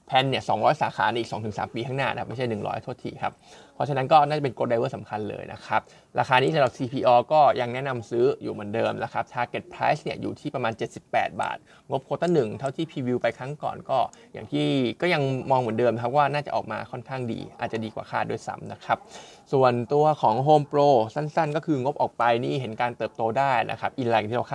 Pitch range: 115-145 Hz